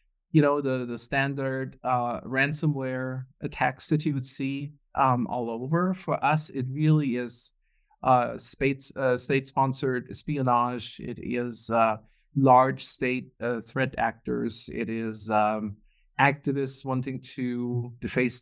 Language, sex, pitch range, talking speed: English, male, 125-150 Hz, 135 wpm